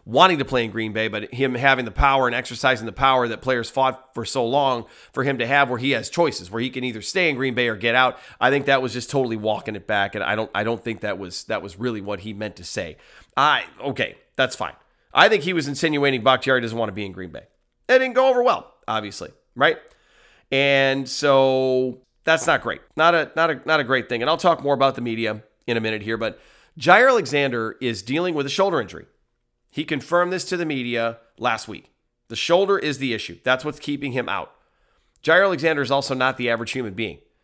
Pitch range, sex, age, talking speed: 115-140 Hz, male, 40-59, 240 wpm